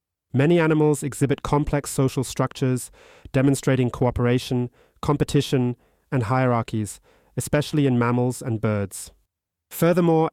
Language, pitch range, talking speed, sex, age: English, 115-140 Hz, 100 wpm, male, 30-49